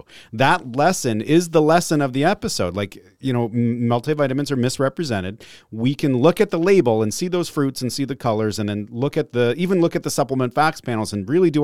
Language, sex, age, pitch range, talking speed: English, male, 30-49, 100-135 Hz, 220 wpm